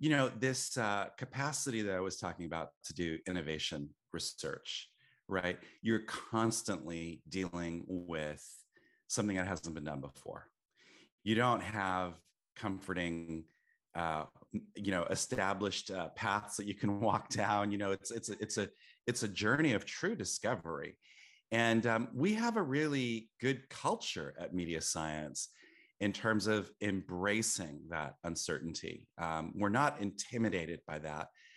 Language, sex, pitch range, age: English, male, 90-115 Hz, 30-49